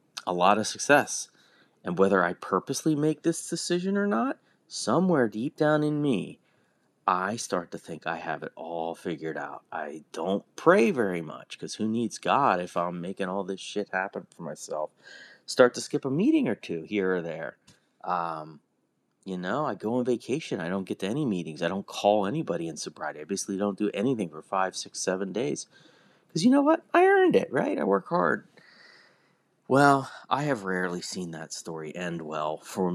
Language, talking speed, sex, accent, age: English, 195 wpm, male, American, 30-49